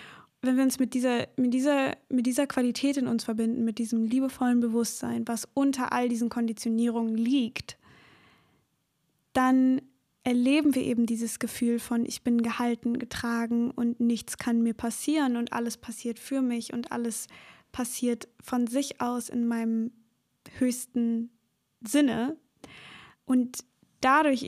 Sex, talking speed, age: female, 130 wpm, 10-29